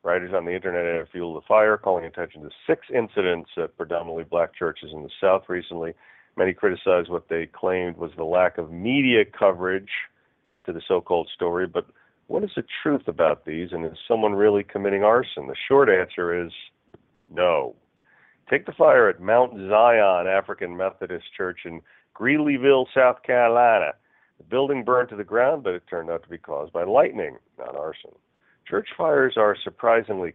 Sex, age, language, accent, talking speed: male, 40-59, English, American, 175 wpm